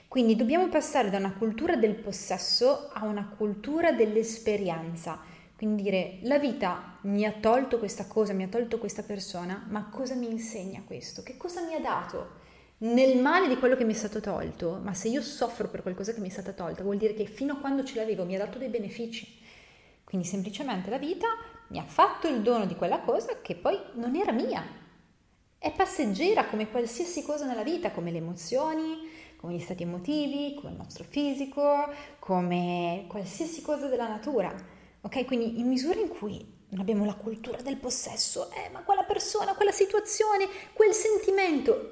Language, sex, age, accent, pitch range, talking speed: Italian, female, 30-49, native, 200-285 Hz, 185 wpm